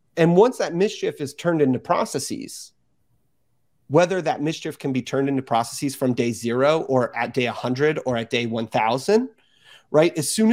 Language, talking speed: English, 170 wpm